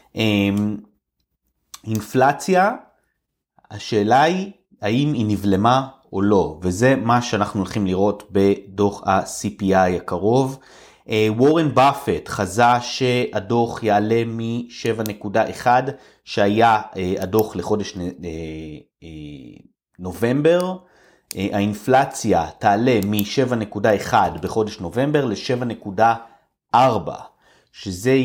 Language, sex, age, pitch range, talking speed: Hebrew, male, 30-49, 100-130 Hz, 85 wpm